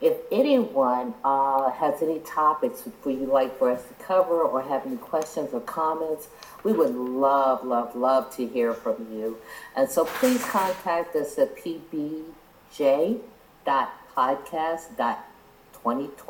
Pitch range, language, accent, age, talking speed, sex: 120-160 Hz, English, American, 50-69, 130 wpm, female